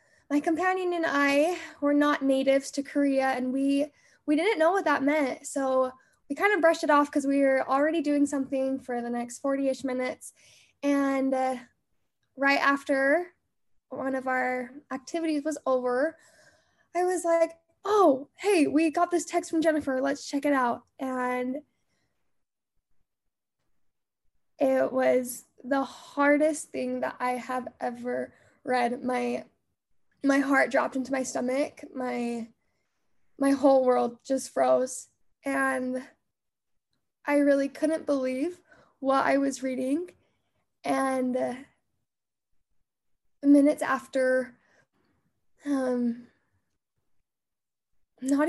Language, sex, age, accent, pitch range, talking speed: English, female, 10-29, American, 260-305 Hz, 120 wpm